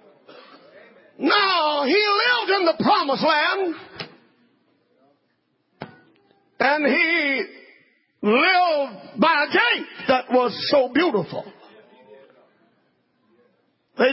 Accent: American